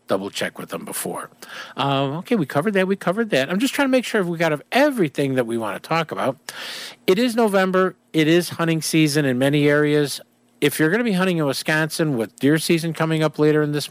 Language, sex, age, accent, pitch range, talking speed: English, male, 50-69, American, 145-245 Hz, 245 wpm